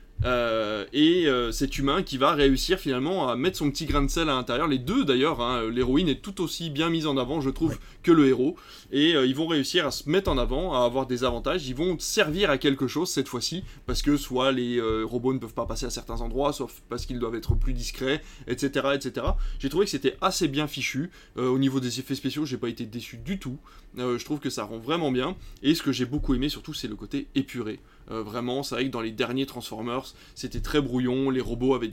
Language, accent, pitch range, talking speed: French, French, 125-145 Hz, 250 wpm